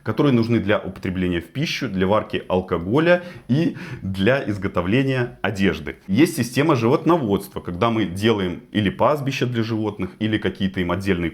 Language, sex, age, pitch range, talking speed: Russian, male, 30-49, 95-125 Hz, 145 wpm